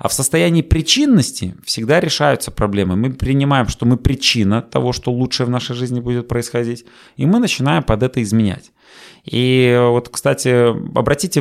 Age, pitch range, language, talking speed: 30-49, 110-135 Hz, Russian, 160 wpm